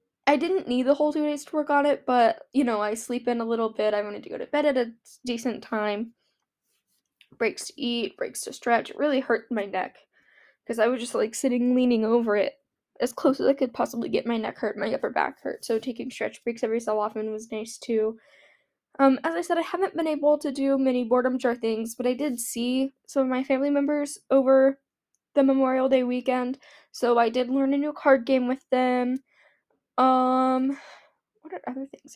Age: 10-29